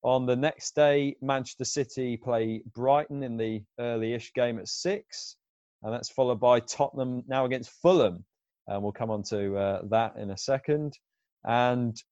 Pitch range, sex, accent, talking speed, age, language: 110-135 Hz, male, British, 165 wpm, 20-39, English